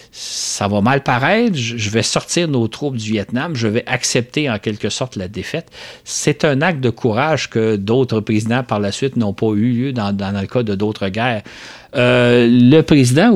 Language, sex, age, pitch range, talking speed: French, male, 50-69, 100-130 Hz, 200 wpm